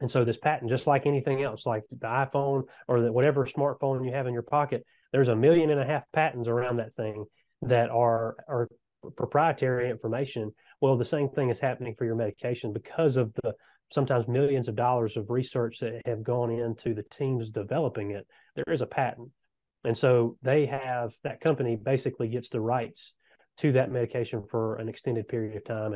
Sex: male